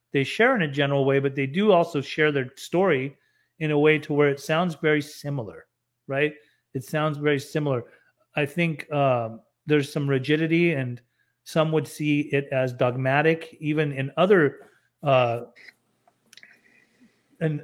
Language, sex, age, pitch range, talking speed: English, male, 40-59, 135-160 Hz, 155 wpm